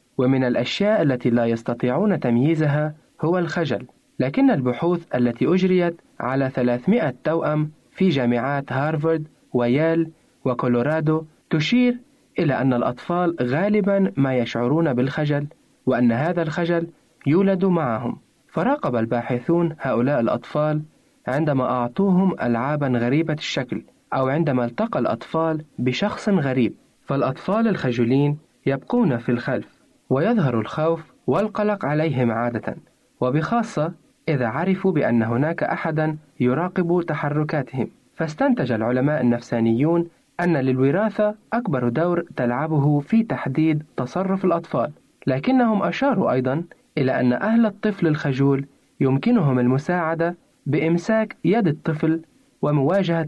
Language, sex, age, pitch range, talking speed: Arabic, male, 30-49, 125-175 Hz, 105 wpm